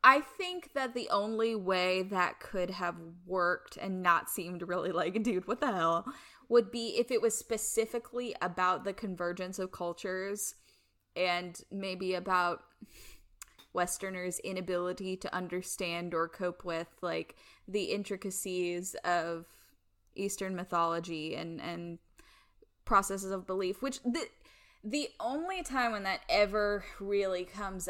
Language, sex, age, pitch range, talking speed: English, female, 10-29, 180-220 Hz, 130 wpm